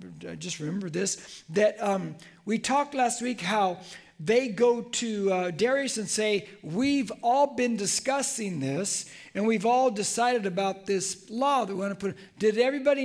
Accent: American